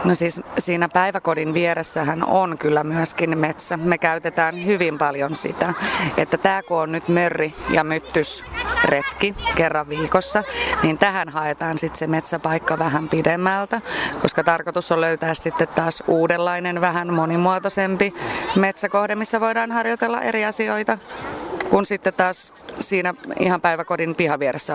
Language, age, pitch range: Finnish, 30-49, 170-200 Hz